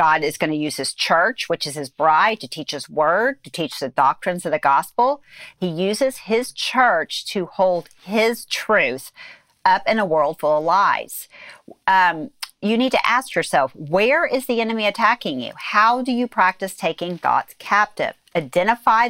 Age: 40-59